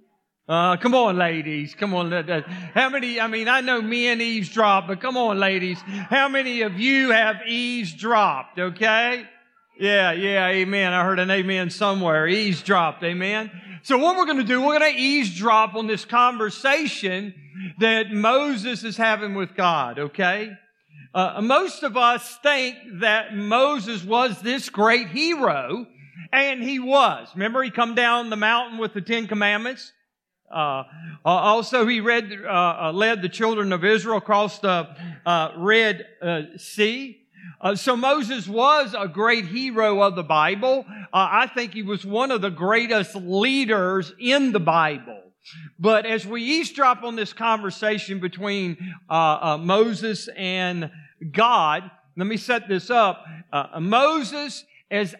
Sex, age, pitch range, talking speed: male, 50-69, 185-240 Hz, 150 wpm